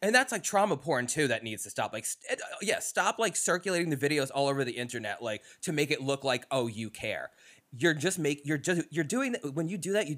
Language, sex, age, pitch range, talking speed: English, male, 20-39, 120-155 Hz, 265 wpm